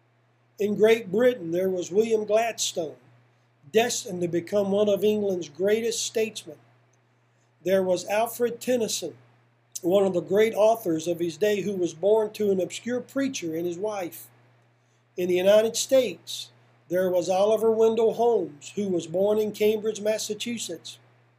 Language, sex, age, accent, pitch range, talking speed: English, male, 50-69, American, 140-210 Hz, 145 wpm